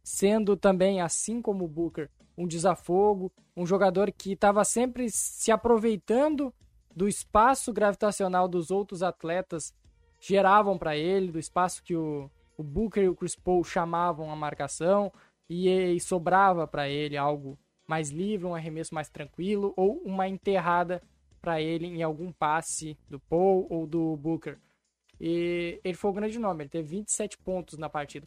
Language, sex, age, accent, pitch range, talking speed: Portuguese, male, 20-39, Brazilian, 165-210 Hz, 155 wpm